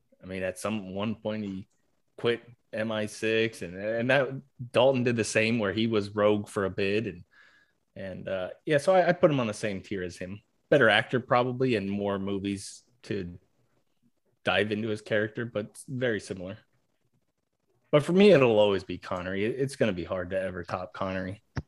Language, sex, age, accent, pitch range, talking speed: English, male, 20-39, American, 105-140 Hz, 190 wpm